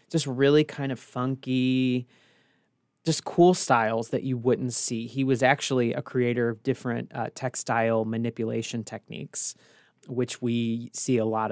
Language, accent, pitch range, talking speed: English, American, 120-135 Hz, 145 wpm